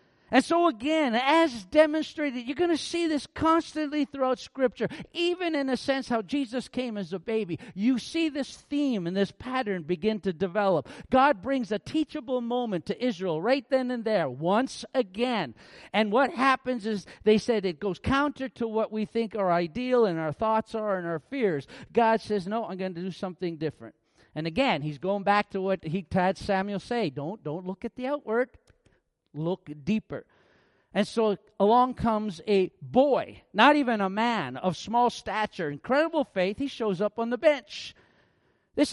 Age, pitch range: 50-69, 195-270 Hz